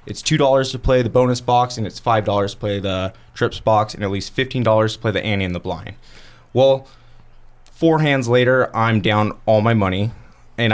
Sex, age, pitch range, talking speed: male, 20-39, 105-130 Hz, 200 wpm